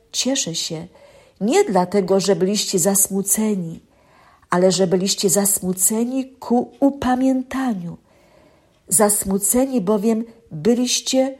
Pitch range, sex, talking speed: 185-235 Hz, female, 85 wpm